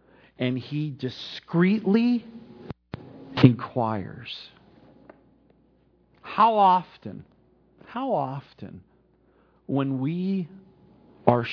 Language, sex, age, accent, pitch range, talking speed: English, male, 50-69, American, 120-180 Hz, 55 wpm